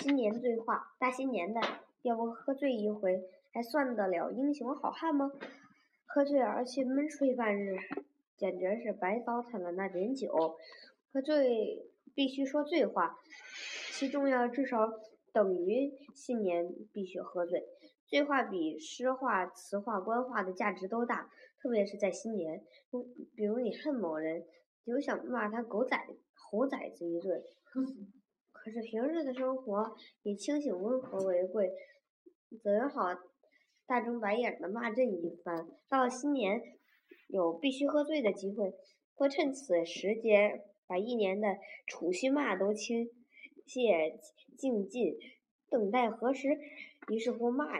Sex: male